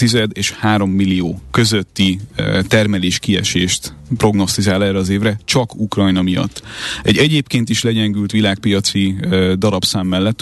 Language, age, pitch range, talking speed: Hungarian, 30-49, 95-110 Hz, 115 wpm